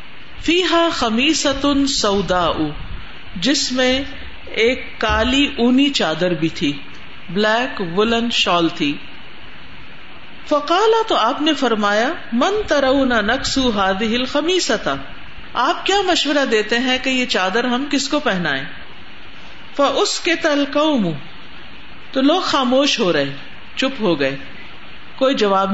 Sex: female